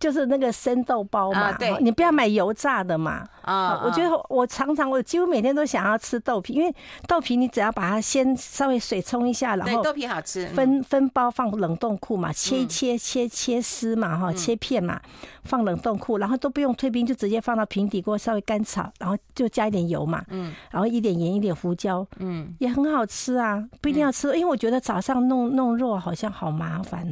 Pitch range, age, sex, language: 190-255 Hz, 50-69, female, Chinese